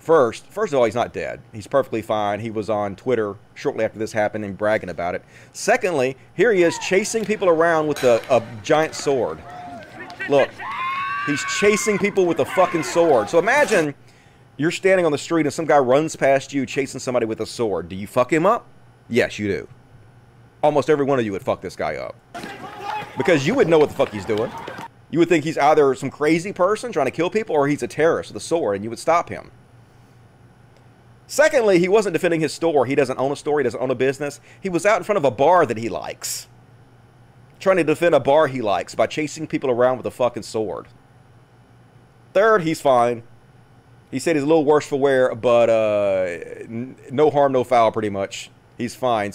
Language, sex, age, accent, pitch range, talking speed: English, male, 30-49, American, 120-165 Hz, 215 wpm